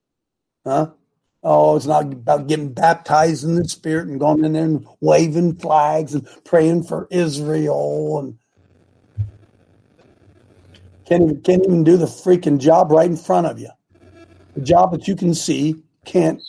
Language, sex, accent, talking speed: English, male, American, 155 wpm